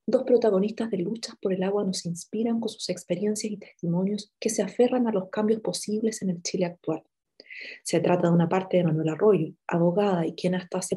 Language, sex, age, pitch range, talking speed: English, female, 30-49, 175-225 Hz, 210 wpm